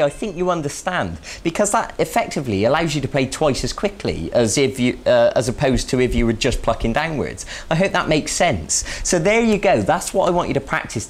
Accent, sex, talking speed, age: British, male, 235 wpm, 20-39